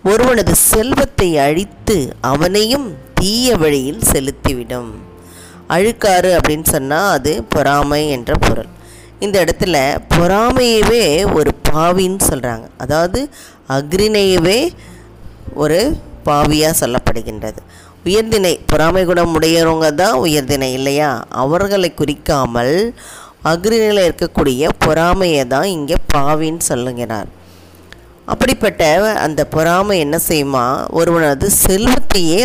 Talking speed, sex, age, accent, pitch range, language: 85 wpm, female, 20-39, native, 135-180 Hz, Tamil